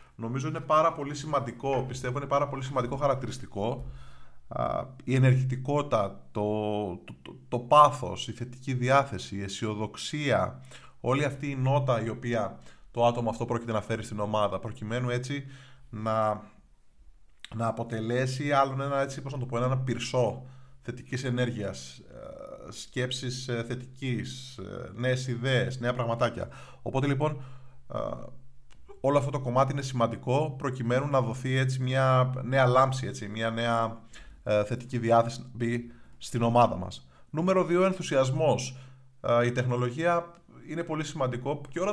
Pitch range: 115-135 Hz